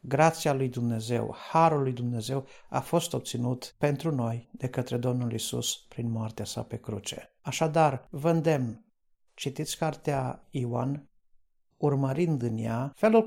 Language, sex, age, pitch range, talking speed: Romanian, male, 50-69, 125-155 Hz, 130 wpm